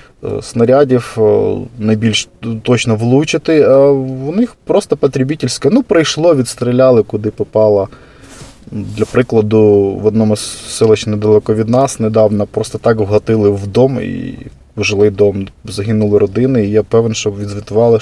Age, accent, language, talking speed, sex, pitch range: 20-39, native, Ukrainian, 130 wpm, male, 105-125 Hz